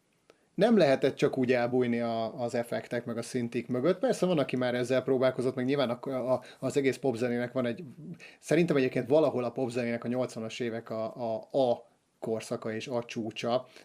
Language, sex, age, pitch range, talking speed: Hungarian, male, 30-49, 120-135 Hz, 165 wpm